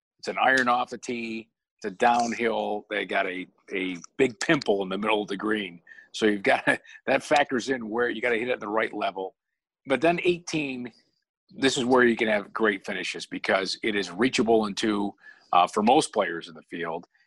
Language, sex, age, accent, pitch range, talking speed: English, male, 50-69, American, 110-140 Hz, 220 wpm